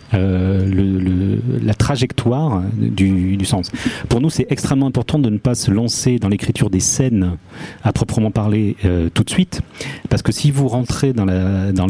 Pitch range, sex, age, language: 95-125 Hz, male, 40-59, French